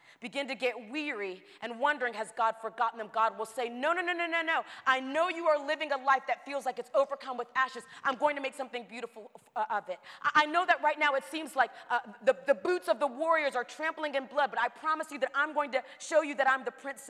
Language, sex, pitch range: English, female, 230-305 Hz